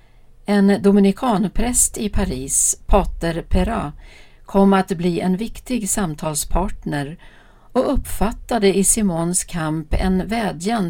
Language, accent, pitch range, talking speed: Swedish, native, 155-215 Hz, 105 wpm